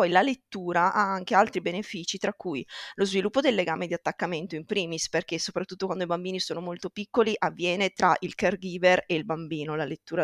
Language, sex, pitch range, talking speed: Italian, female, 175-215 Hz, 200 wpm